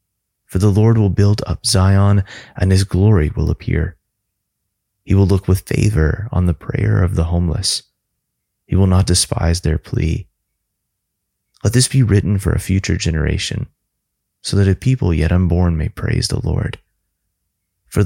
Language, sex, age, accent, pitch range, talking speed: English, male, 30-49, American, 85-105 Hz, 160 wpm